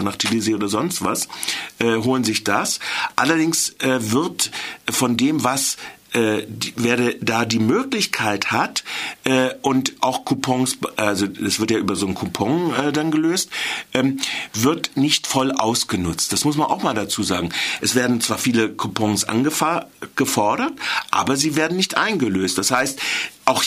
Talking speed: 155 wpm